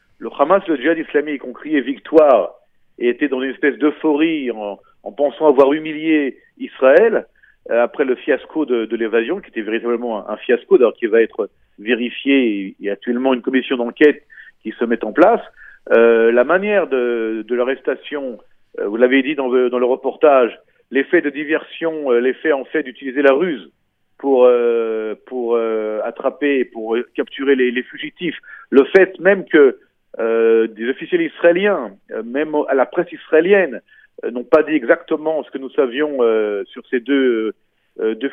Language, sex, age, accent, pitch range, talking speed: Italian, male, 40-59, French, 120-165 Hz, 175 wpm